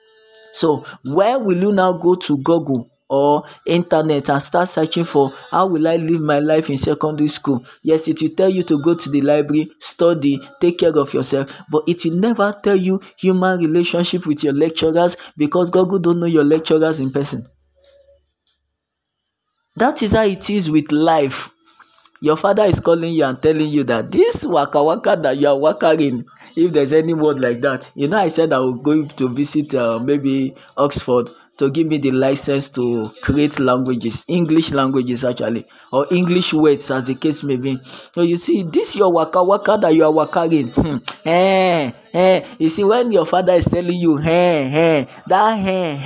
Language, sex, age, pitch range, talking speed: English, male, 20-39, 140-175 Hz, 190 wpm